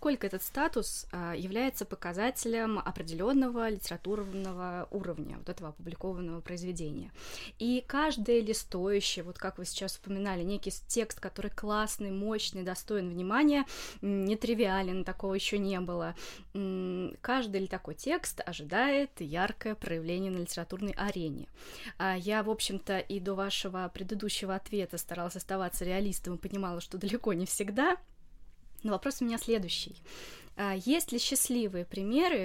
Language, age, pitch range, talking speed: Russian, 20-39, 185-230 Hz, 125 wpm